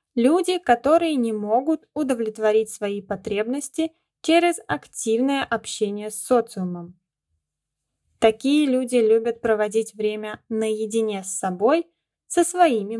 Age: 10-29